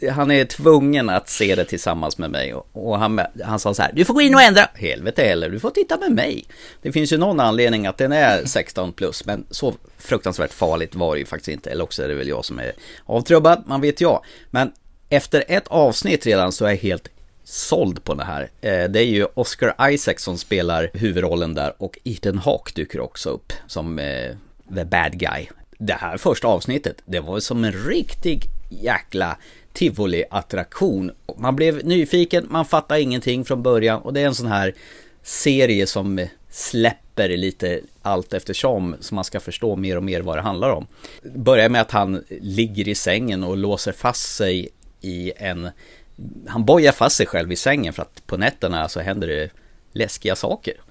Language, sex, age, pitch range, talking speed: Swedish, male, 30-49, 90-135 Hz, 195 wpm